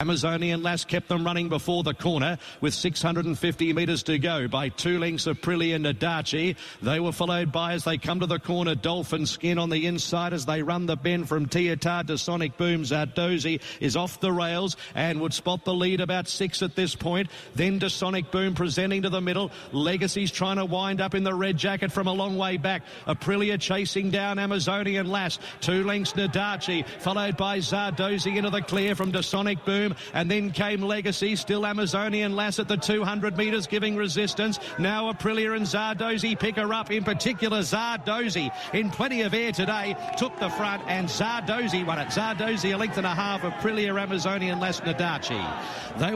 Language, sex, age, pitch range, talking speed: English, male, 50-69, 165-200 Hz, 190 wpm